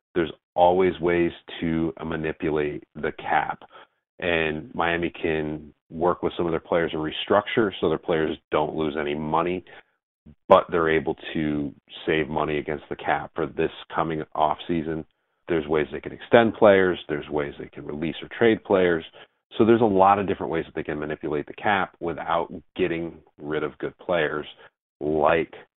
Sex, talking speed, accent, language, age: male, 165 wpm, American, English, 40-59